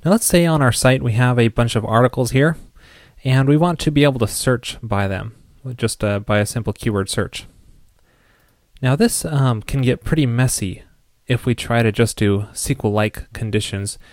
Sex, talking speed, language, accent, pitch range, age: male, 185 wpm, English, American, 105-130 Hz, 20-39